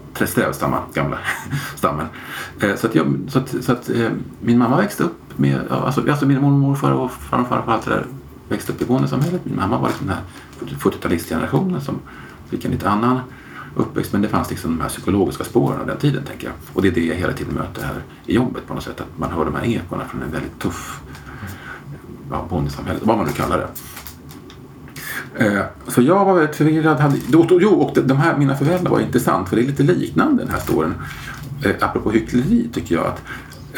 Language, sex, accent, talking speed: Swedish, male, Norwegian, 185 wpm